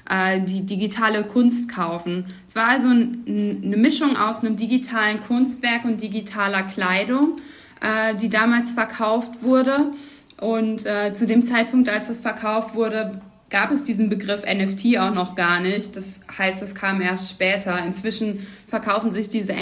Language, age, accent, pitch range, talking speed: German, 20-39, German, 195-235 Hz, 145 wpm